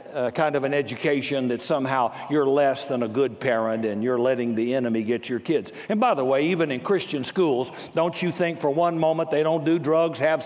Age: 60-79